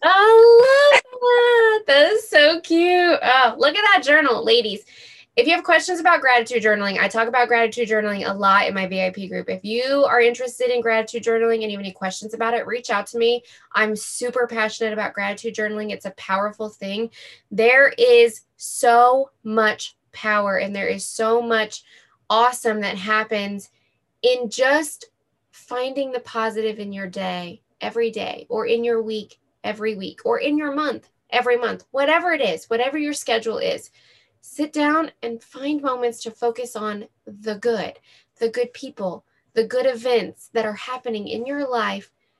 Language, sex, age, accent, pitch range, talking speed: English, female, 20-39, American, 210-275 Hz, 175 wpm